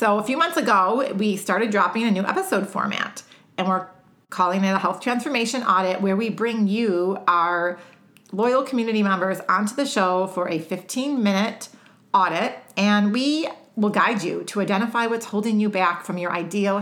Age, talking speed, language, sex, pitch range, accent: 40-59, 175 wpm, English, female, 180-225 Hz, American